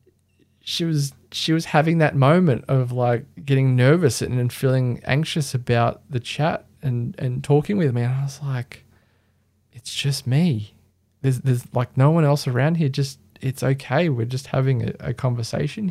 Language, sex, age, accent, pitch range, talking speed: English, male, 20-39, Australian, 115-140 Hz, 175 wpm